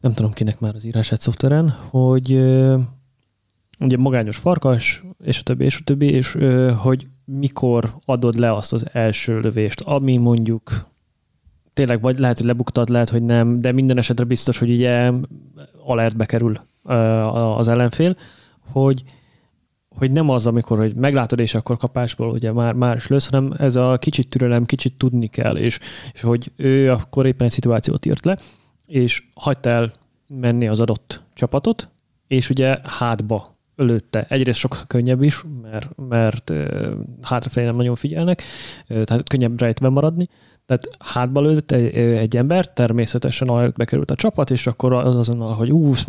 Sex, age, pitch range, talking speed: male, 20-39, 120-135 Hz, 155 wpm